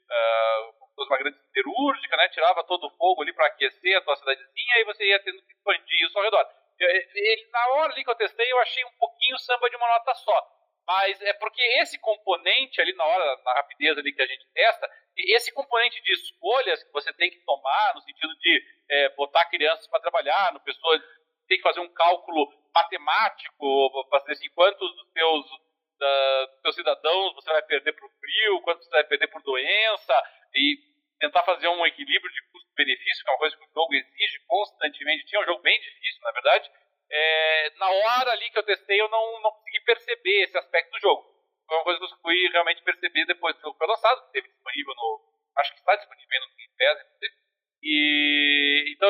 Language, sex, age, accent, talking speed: Portuguese, male, 40-59, Brazilian, 200 wpm